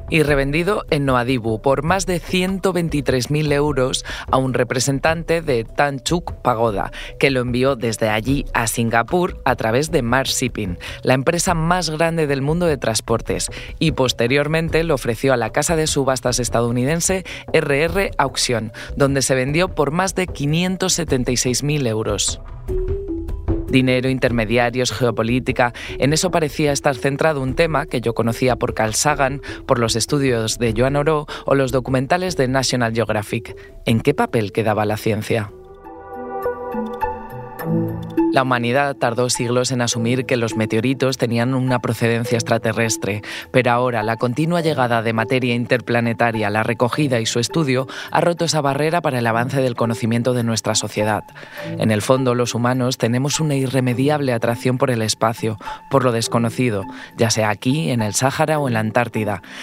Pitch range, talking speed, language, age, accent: 115-145 Hz, 155 wpm, Spanish, 20-39, Spanish